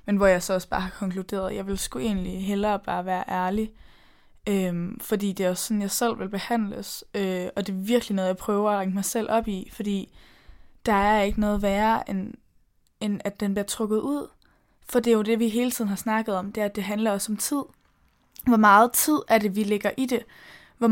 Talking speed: 240 wpm